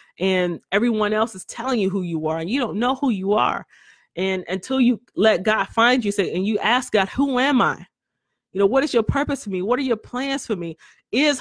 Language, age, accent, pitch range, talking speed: English, 30-49, American, 180-230 Hz, 240 wpm